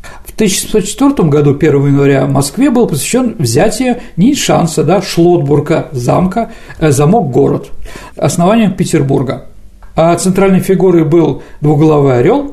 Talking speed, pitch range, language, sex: 120 wpm, 150-240 Hz, Russian, male